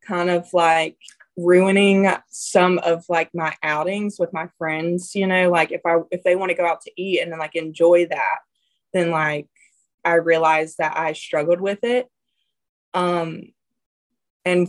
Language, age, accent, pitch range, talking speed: English, 20-39, American, 155-180 Hz, 170 wpm